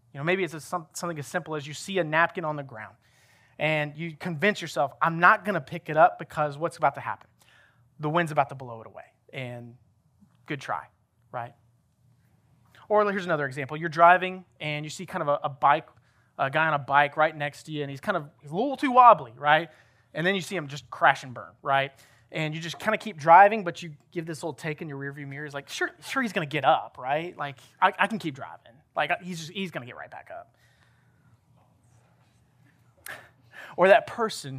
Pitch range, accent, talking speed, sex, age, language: 130-170 Hz, American, 230 wpm, male, 30-49, English